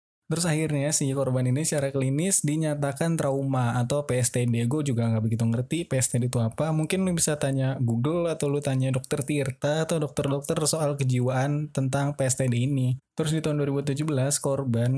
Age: 20-39